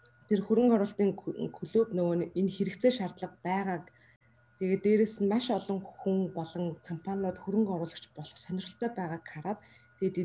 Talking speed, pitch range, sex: 125 wpm, 165-210 Hz, female